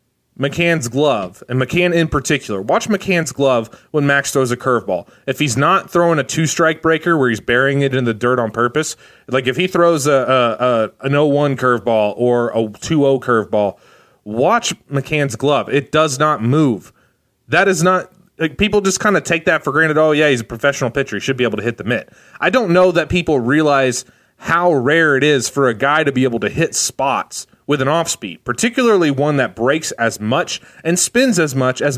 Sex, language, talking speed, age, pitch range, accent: male, English, 210 wpm, 30-49, 130-175 Hz, American